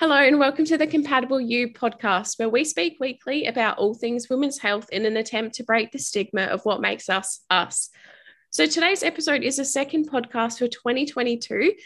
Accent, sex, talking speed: Australian, female, 190 wpm